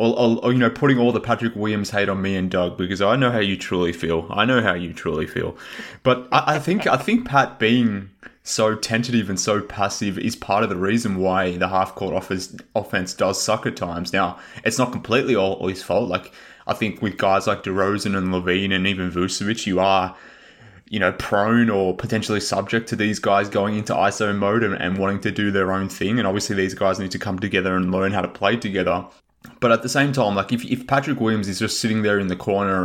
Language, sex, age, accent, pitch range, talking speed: English, male, 20-39, Australian, 95-115 Hz, 235 wpm